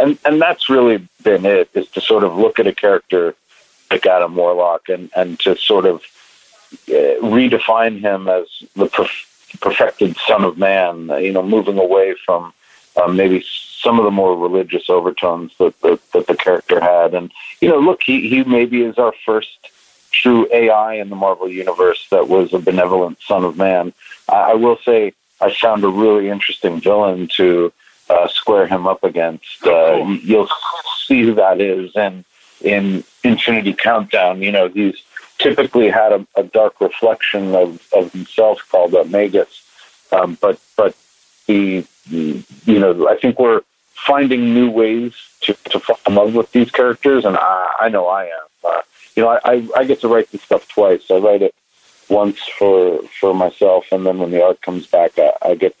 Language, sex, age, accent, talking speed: English, male, 50-69, American, 175 wpm